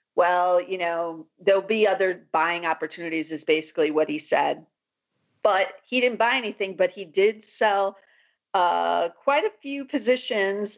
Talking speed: 150 wpm